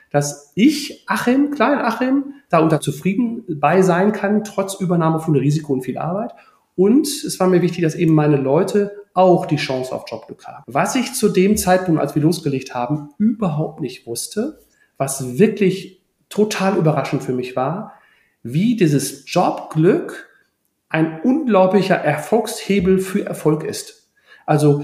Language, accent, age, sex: German, German, 40-59, male